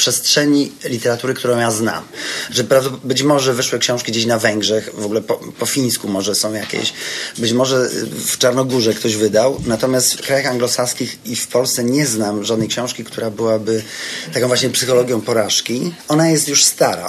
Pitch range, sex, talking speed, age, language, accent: 115-130 Hz, male, 170 wpm, 30-49, Polish, native